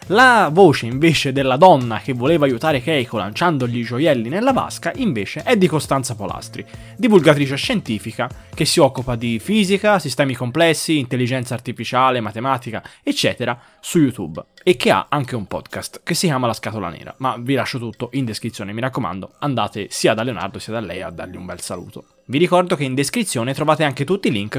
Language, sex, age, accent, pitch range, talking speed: Italian, male, 20-39, native, 115-160 Hz, 185 wpm